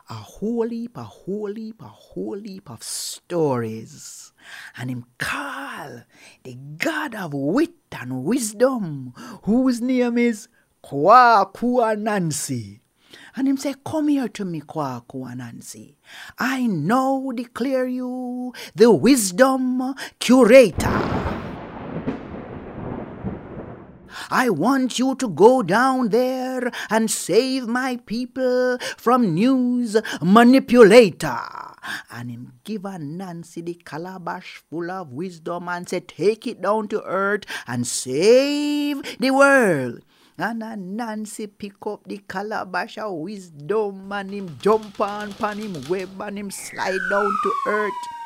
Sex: male